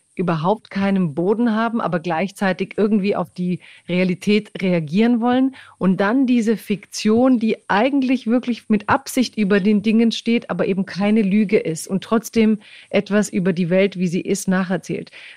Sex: female